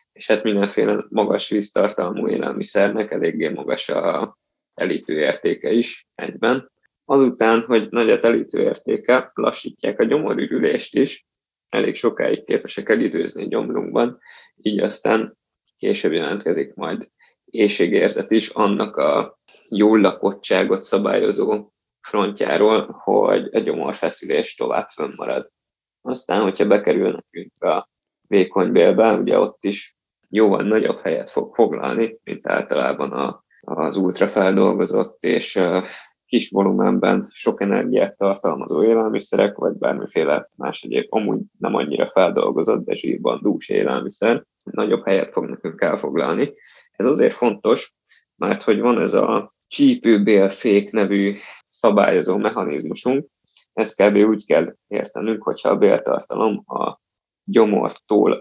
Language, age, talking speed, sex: Hungarian, 20-39, 115 wpm, male